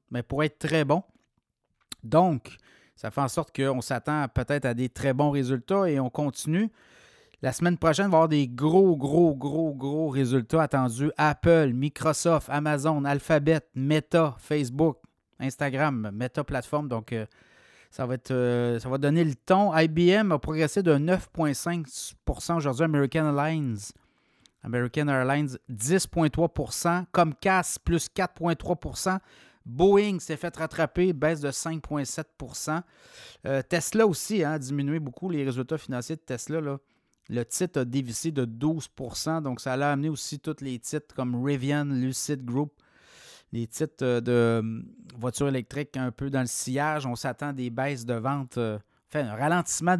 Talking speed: 150 wpm